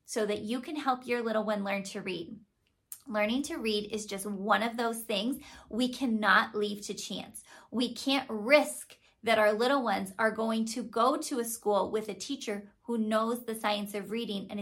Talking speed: 200 wpm